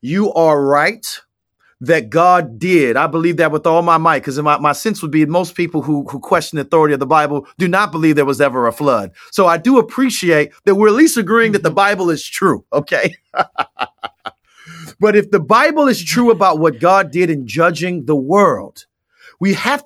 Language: English